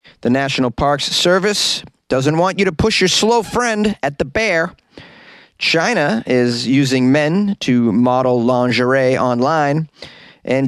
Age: 30-49